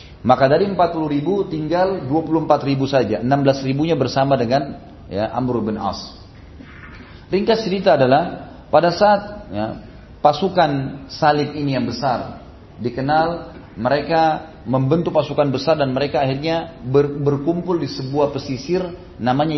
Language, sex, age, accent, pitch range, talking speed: Indonesian, male, 30-49, native, 120-160 Hz, 125 wpm